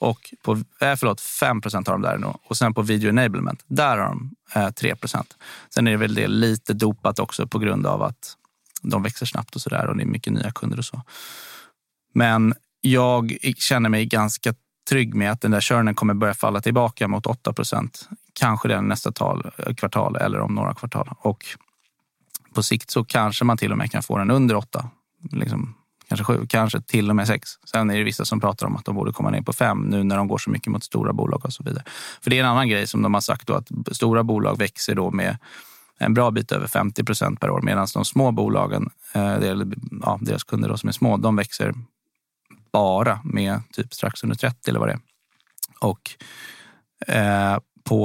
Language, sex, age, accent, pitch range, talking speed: Swedish, male, 30-49, native, 105-125 Hz, 205 wpm